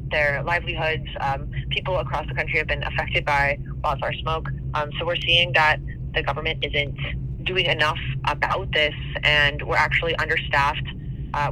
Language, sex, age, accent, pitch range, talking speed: English, female, 20-39, American, 135-160 Hz, 155 wpm